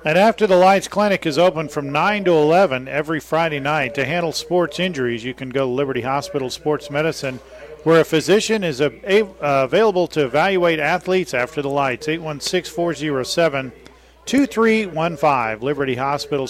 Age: 40-59